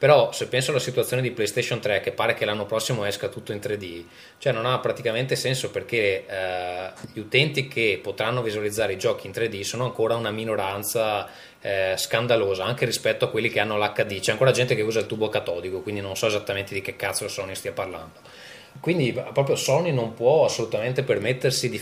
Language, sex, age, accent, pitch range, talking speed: Italian, male, 20-39, native, 95-125 Hz, 200 wpm